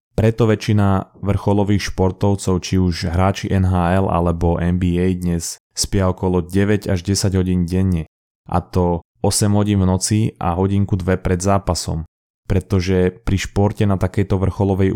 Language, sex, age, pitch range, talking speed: Slovak, male, 20-39, 90-100 Hz, 140 wpm